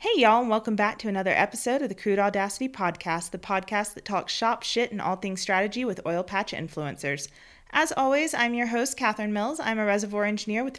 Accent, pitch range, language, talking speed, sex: American, 185-240 Hz, English, 215 wpm, female